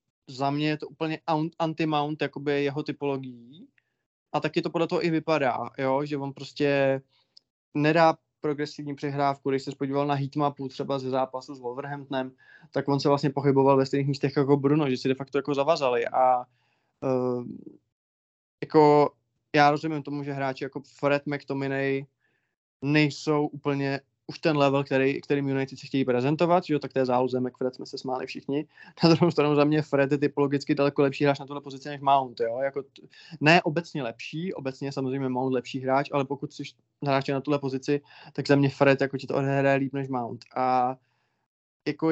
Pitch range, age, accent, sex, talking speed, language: 135-145 Hz, 20-39, native, male, 175 wpm, Czech